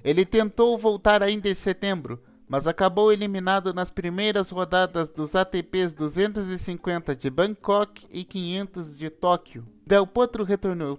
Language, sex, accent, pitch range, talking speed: Portuguese, male, Brazilian, 170-205 Hz, 130 wpm